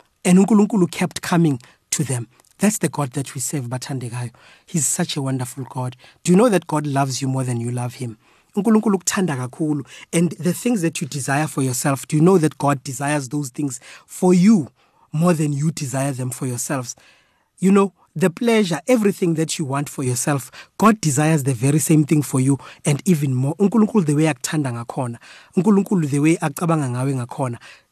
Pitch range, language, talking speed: 135-175 Hz, English, 190 wpm